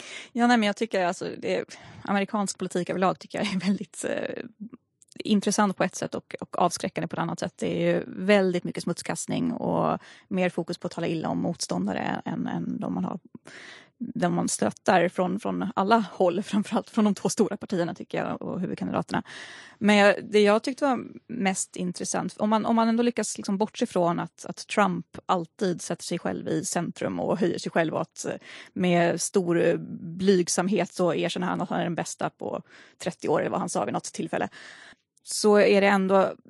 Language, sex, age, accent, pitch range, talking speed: Swedish, female, 20-39, native, 185-220 Hz, 200 wpm